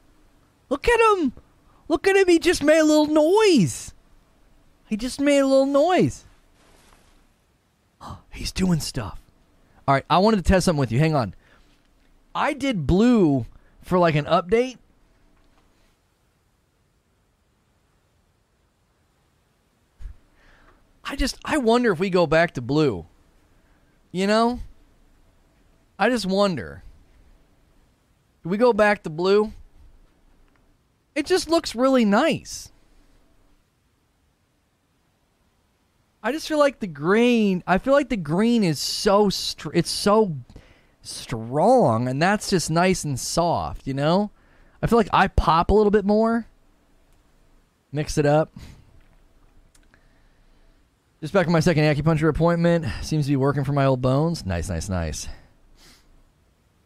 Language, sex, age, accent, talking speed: English, male, 30-49, American, 125 wpm